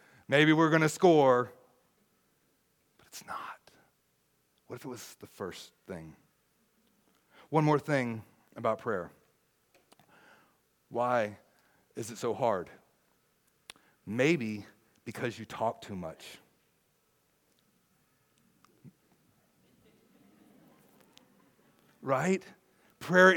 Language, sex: English, male